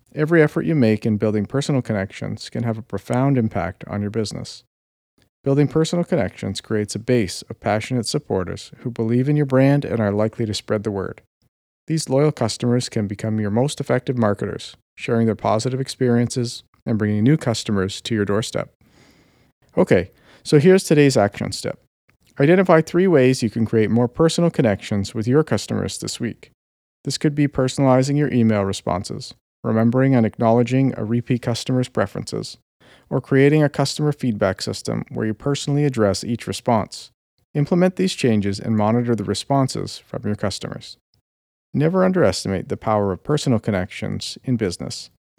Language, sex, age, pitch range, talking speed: English, male, 50-69, 105-145 Hz, 160 wpm